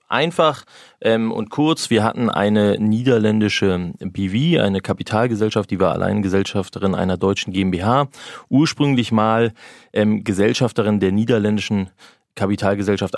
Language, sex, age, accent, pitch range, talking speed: German, male, 30-49, German, 95-115 Hz, 110 wpm